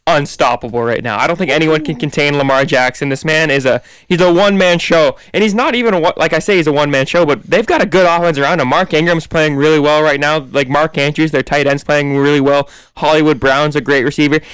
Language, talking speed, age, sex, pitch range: English, 255 wpm, 20-39, male, 140-170 Hz